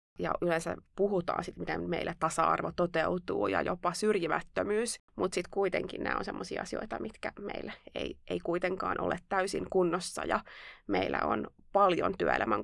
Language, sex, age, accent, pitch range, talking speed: Finnish, female, 20-39, native, 175-220 Hz, 145 wpm